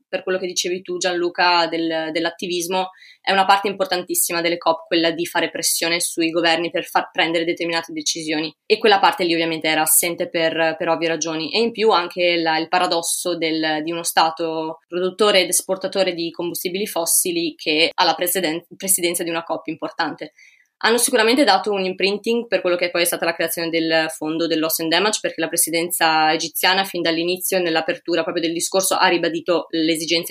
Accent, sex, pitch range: native, female, 165-190 Hz